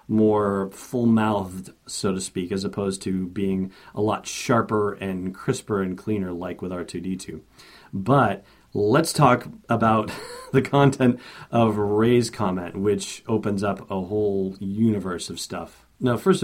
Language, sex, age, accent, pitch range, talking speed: English, male, 40-59, American, 100-115 Hz, 140 wpm